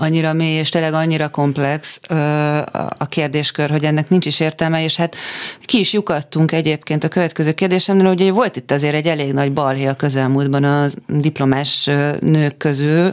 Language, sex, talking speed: Hungarian, female, 175 wpm